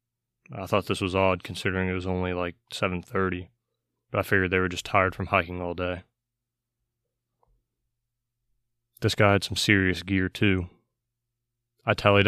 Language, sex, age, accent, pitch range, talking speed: English, male, 20-39, American, 95-115 Hz, 150 wpm